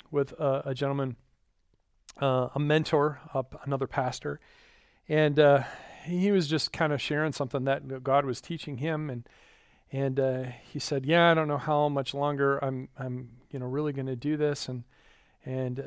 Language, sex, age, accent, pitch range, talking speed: English, male, 40-59, American, 130-155 Hz, 180 wpm